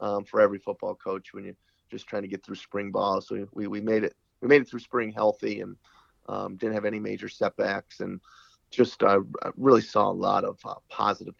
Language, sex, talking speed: English, male, 225 wpm